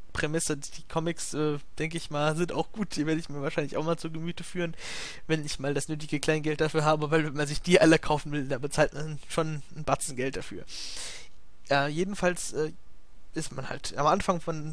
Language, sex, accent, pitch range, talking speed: English, male, German, 140-165 Hz, 215 wpm